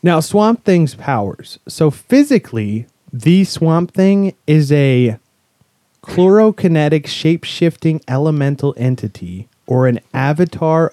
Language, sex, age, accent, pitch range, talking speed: English, male, 30-49, American, 120-160 Hz, 100 wpm